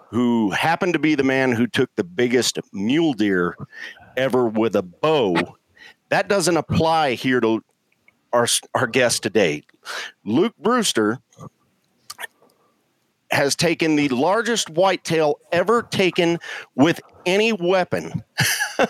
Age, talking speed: 50-69, 120 wpm